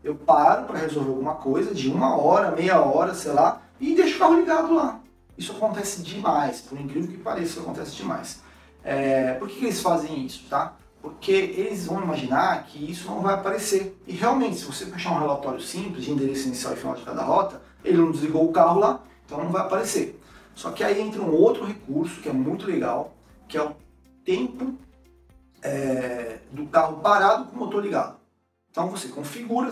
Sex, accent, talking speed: male, Brazilian, 200 wpm